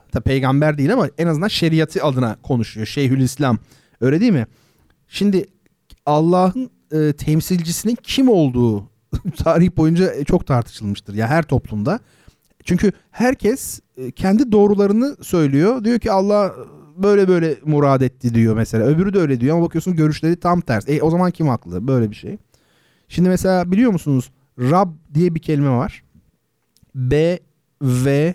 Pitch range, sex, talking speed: 120-165 Hz, male, 145 wpm